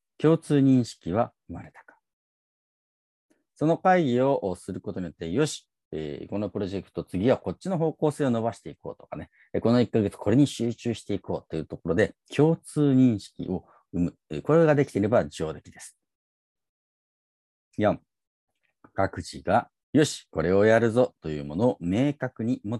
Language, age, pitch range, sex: Japanese, 40-59, 95-140 Hz, male